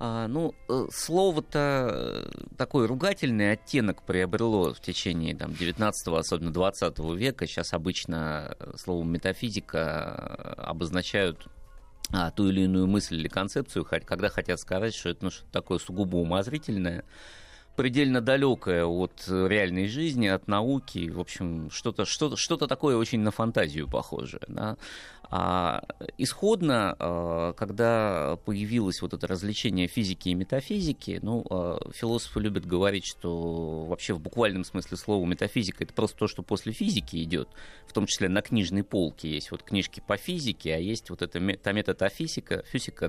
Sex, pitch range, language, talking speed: male, 90-120 Hz, Russian, 135 wpm